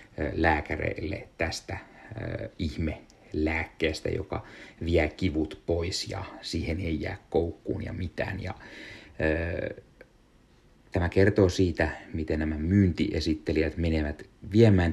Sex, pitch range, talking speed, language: male, 75-85 Hz, 100 wpm, Finnish